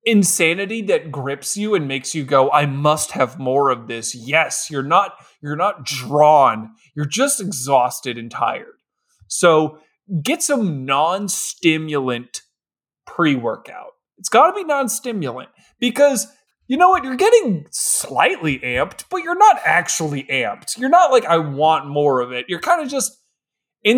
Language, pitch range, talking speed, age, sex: English, 135-205 Hz, 155 wpm, 20-39, male